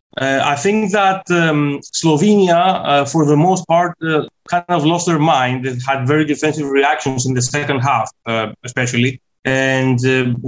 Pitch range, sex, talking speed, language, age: 130-150 Hz, male, 170 wpm, English, 30-49